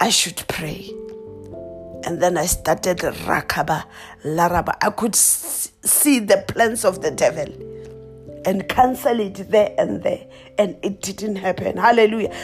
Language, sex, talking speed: English, female, 135 wpm